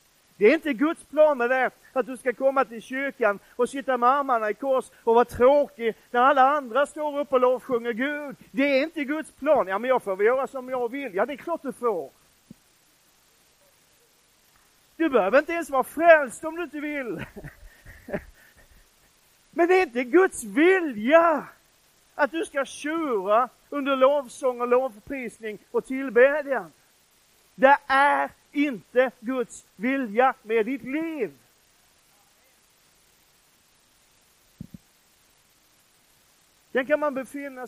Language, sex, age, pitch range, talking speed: Swedish, male, 40-59, 230-285 Hz, 135 wpm